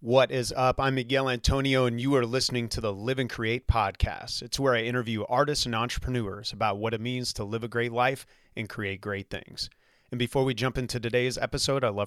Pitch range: 110-130 Hz